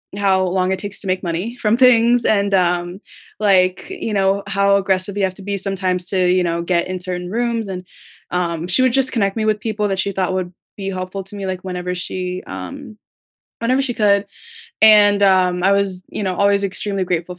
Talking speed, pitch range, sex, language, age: 210 wpm, 185-210 Hz, female, English, 20-39